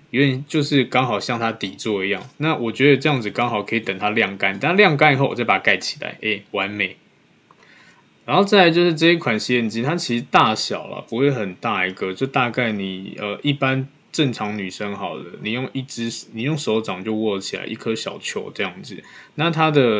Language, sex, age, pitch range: Chinese, male, 20-39, 105-135 Hz